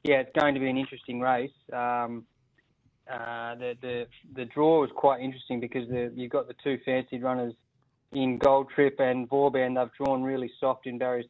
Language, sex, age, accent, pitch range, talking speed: English, male, 20-39, Australian, 125-135 Hz, 190 wpm